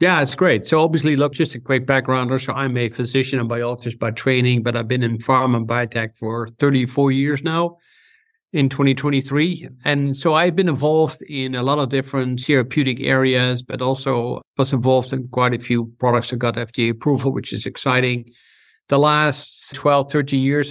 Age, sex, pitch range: 60-79, male, 125-145 Hz